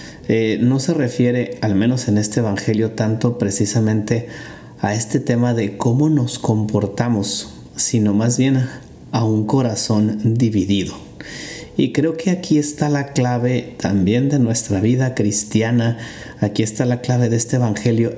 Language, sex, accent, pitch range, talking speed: Spanish, male, Mexican, 110-140 Hz, 145 wpm